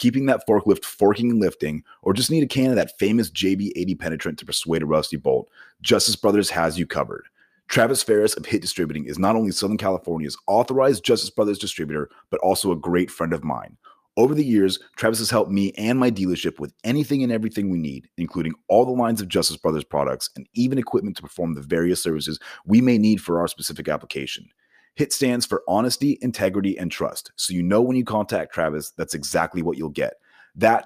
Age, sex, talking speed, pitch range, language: 30-49, male, 205 wpm, 85-115 Hz, English